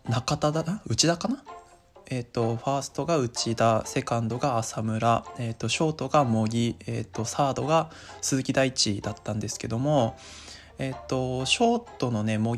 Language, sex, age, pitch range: Japanese, male, 20-39, 115-145 Hz